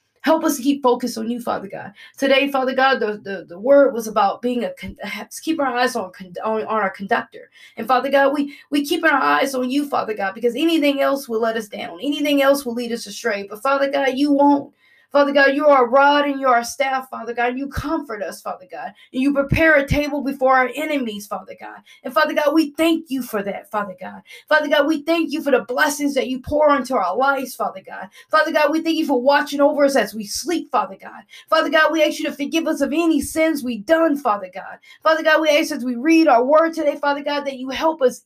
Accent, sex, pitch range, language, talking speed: American, female, 250-310 Hz, English, 245 wpm